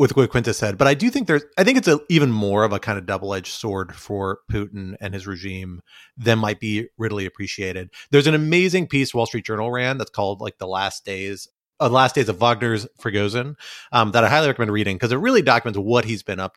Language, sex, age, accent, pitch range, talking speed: English, male, 30-49, American, 100-130 Hz, 240 wpm